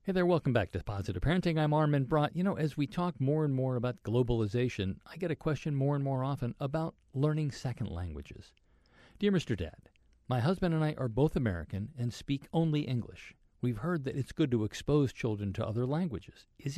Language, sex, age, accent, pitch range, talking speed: English, male, 50-69, American, 110-150 Hz, 205 wpm